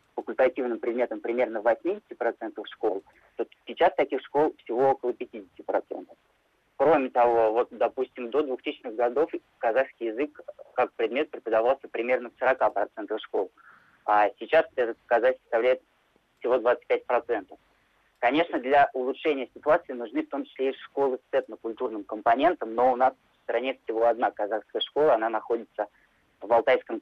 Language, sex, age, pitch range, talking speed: Russian, male, 20-39, 115-145 Hz, 135 wpm